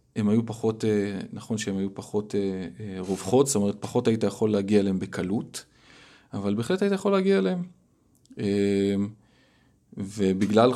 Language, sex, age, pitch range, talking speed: Hebrew, male, 20-39, 95-120 Hz, 130 wpm